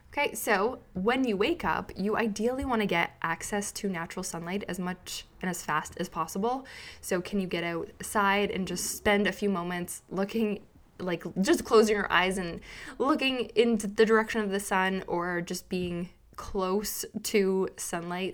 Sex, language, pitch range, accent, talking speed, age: female, English, 170-205 Hz, American, 175 wpm, 20-39